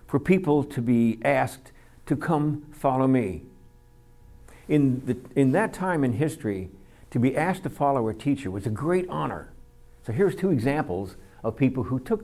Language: English